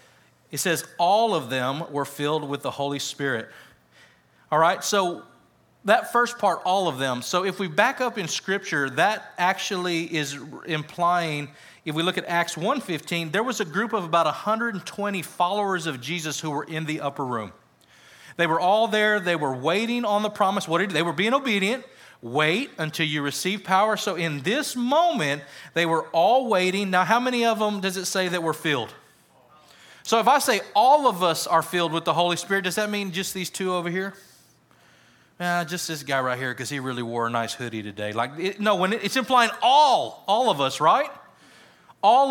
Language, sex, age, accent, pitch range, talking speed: English, male, 40-59, American, 155-210 Hz, 200 wpm